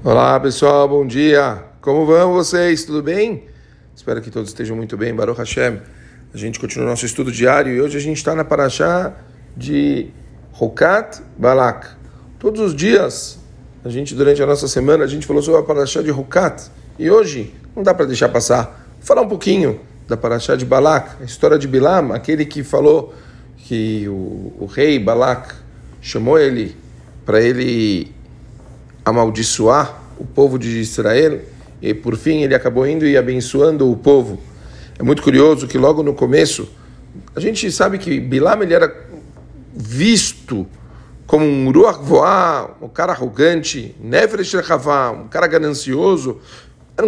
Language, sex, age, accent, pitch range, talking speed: Portuguese, male, 40-59, Brazilian, 125-160 Hz, 155 wpm